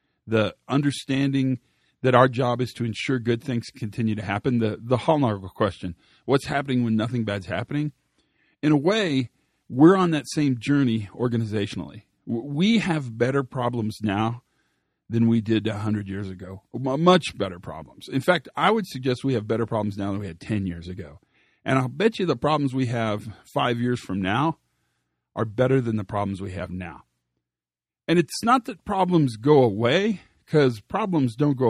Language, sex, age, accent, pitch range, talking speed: English, male, 40-59, American, 110-150 Hz, 175 wpm